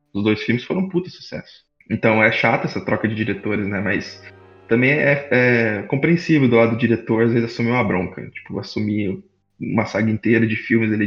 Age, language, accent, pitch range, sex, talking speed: 20-39, Portuguese, Brazilian, 105-120 Hz, male, 200 wpm